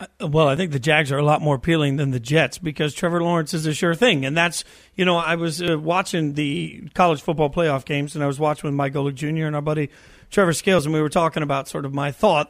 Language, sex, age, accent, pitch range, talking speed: English, male, 40-59, American, 155-185 Hz, 265 wpm